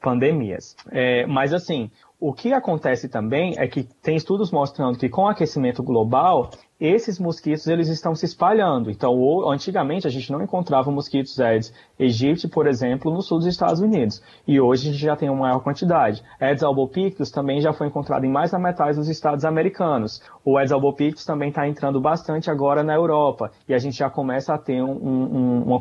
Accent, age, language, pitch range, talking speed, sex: Brazilian, 20-39, Portuguese, 125-150 Hz, 180 wpm, male